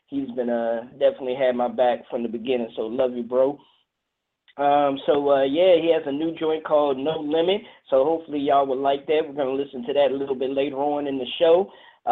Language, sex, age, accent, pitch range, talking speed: English, male, 20-39, American, 140-180 Hz, 235 wpm